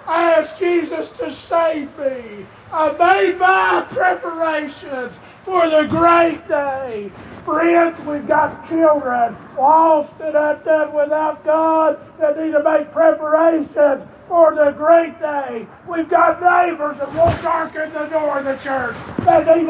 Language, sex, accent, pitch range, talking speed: English, male, American, 295-330 Hz, 140 wpm